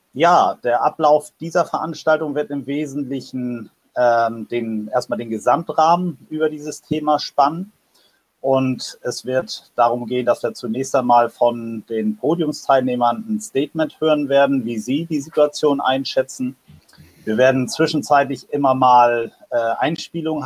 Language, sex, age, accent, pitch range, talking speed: German, male, 40-59, German, 120-150 Hz, 130 wpm